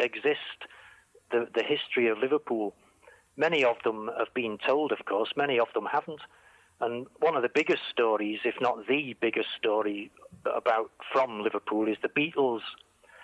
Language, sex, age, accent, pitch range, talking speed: English, male, 40-59, British, 110-140 Hz, 160 wpm